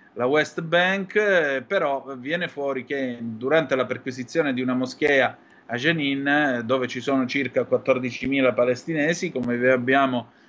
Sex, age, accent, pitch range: male, 30-49, native, 125-165 Hz